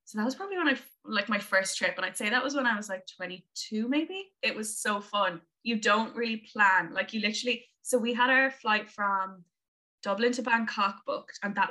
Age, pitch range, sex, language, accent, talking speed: 20-39, 185-235 Hz, female, English, Irish, 225 wpm